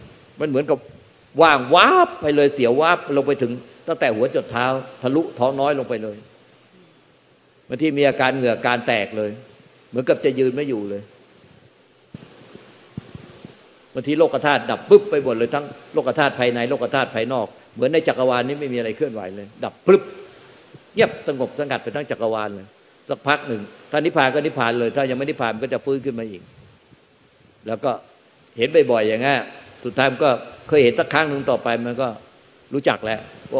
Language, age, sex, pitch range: Thai, 60-79, male, 115-145 Hz